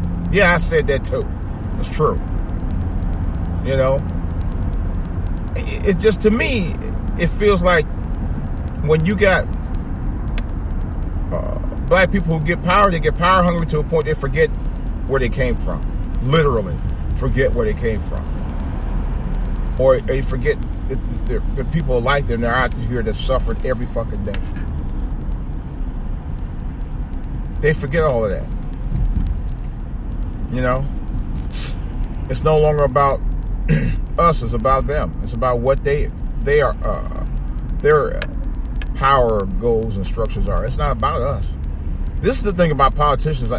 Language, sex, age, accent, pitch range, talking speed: English, male, 40-59, American, 85-140 Hz, 140 wpm